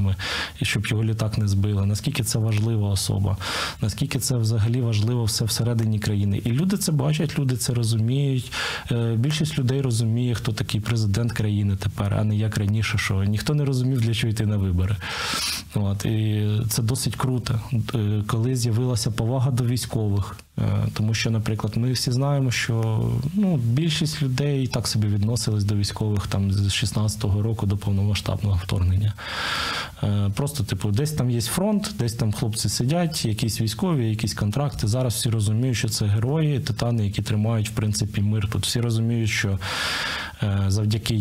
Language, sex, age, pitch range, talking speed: Ukrainian, male, 20-39, 105-125 Hz, 155 wpm